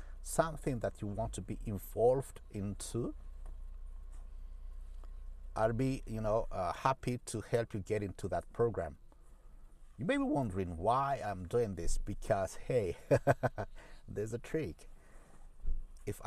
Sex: male